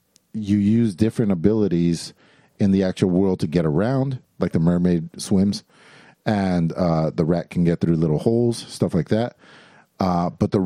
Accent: American